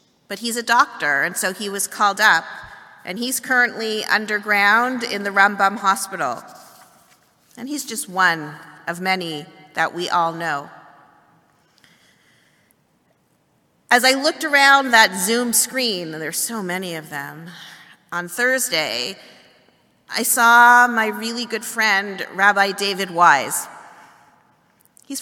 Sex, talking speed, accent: female, 125 wpm, American